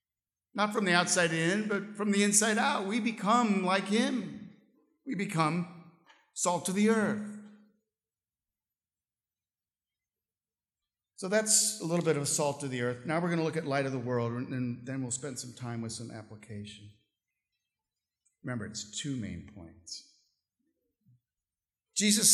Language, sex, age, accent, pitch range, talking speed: English, male, 50-69, American, 120-195 Hz, 150 wpm